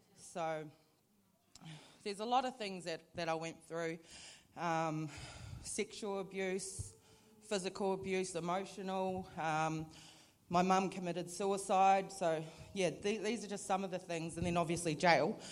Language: English